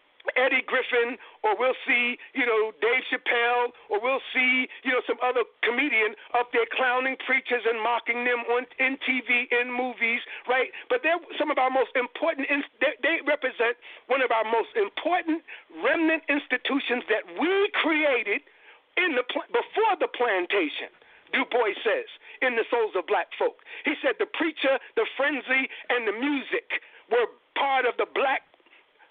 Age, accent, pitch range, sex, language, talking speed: 50-69, American, 255-395 Hz, male, English, 165 wpm